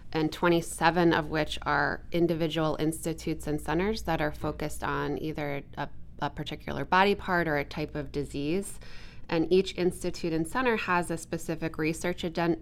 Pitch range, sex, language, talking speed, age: 145-165 Hz, female, English, 160 wpm, 20-39